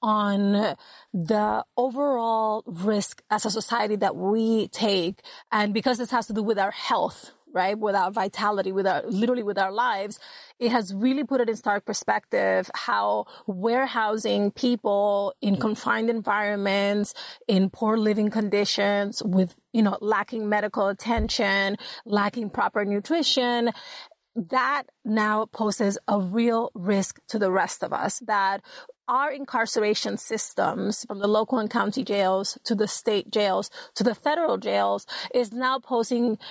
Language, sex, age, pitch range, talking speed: English, female, 30-49, 200-240 Hz, 145 wpm